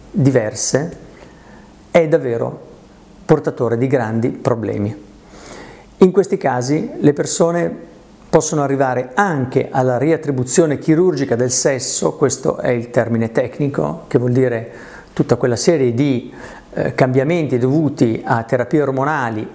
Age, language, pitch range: 50-69, Italian, 120-155 Hz